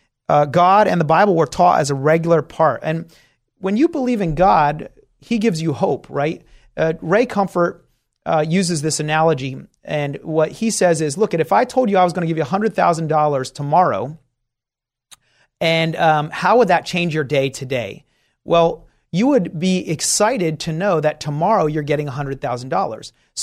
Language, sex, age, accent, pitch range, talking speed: English, male, 30-49, American, 155-190 Hz, 175 wpm